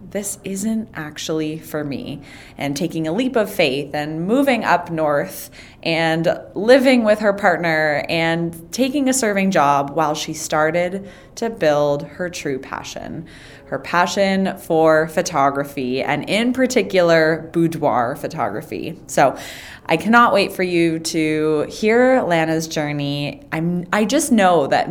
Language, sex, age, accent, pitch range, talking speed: English, female, 20-39, American, 150-200 Hz, 135 wpm